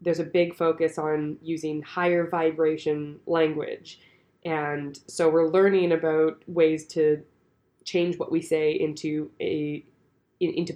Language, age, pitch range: English, 20-39, 155-180 Hz